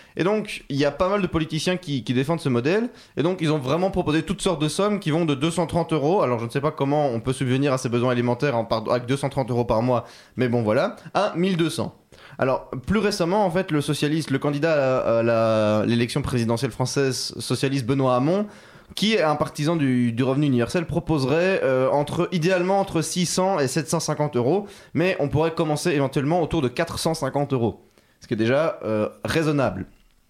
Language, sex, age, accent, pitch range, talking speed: French, male, 20-39, French, 130-185 Hz, 200 wpm